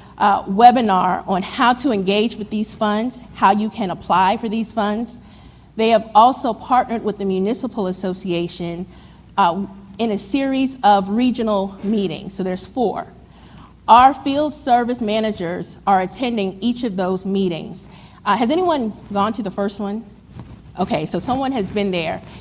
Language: English